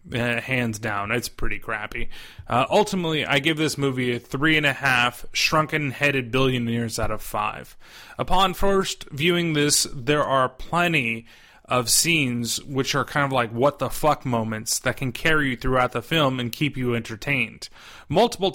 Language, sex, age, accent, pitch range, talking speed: English, male, 30-49, American, 115-145 Hz, 170 wpm